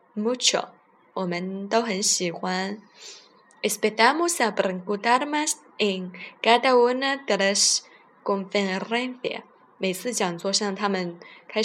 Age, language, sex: 20-39, Chinese, female